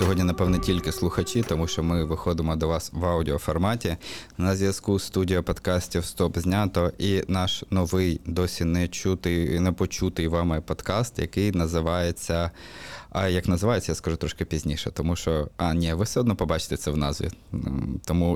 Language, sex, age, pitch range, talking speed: Ukrainian, male, 20-39, 85-100 Hz, 145 wpm